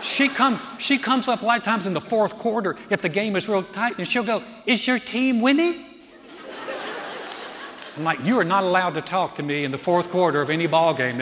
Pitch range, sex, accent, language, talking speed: 160-235 Hz, male, American, English, 235 wpm